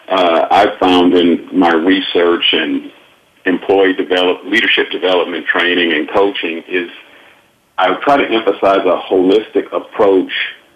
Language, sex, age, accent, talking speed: English, male, 50-69, American, 130 wpm